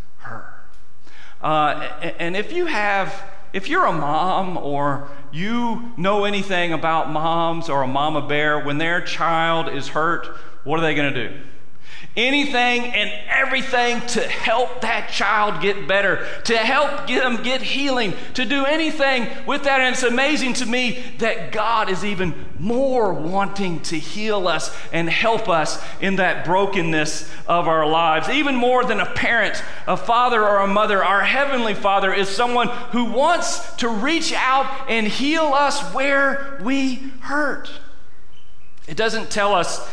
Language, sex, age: English, male, 40-59